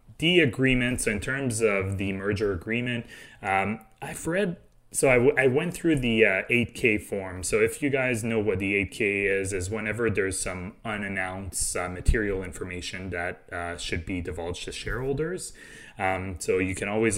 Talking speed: 170 wpm